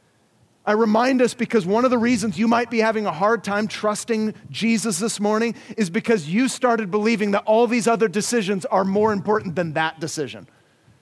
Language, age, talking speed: English, 40-59, 190 wpm